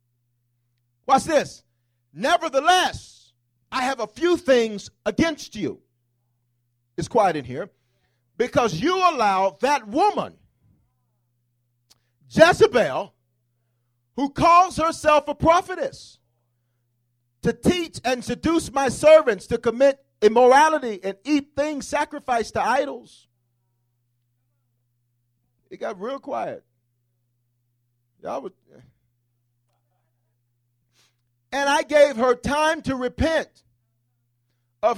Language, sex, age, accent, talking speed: English, male, 40-59, American, 95 wpm